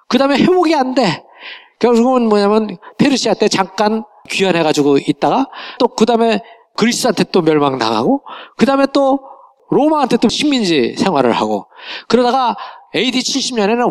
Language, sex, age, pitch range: Korean, male, 40-59, 165-260 Hz